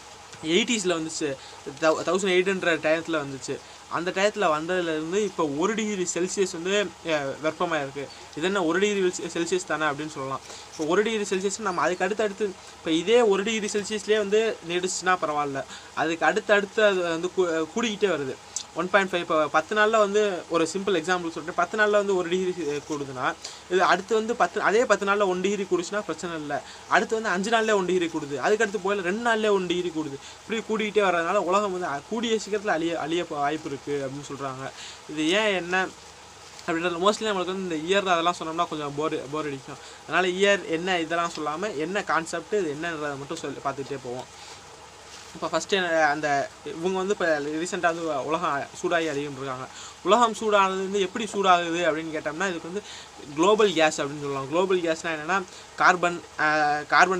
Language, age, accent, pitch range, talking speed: Tamil, 20-39, native, 155-200 Hz, 165 wpm